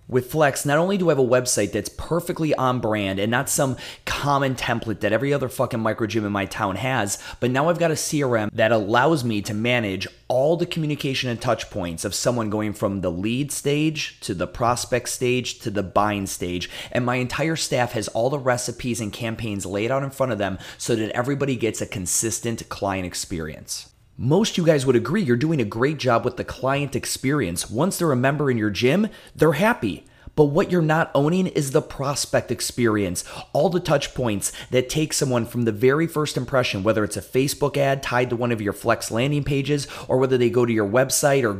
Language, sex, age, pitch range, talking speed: English, male, 30-49, 110-145 Hz, 215 wpm